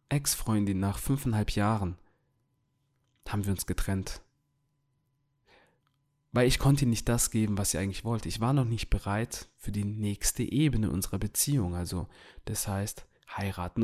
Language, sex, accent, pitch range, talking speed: German, male, German, 105-140 Hz, 145 wpm